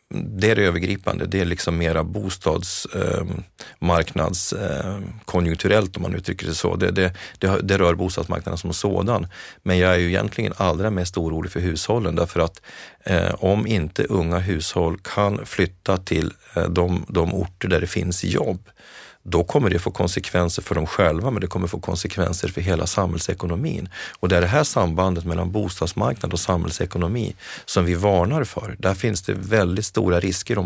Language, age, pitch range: Swedish, 30-49, 85-100 Hz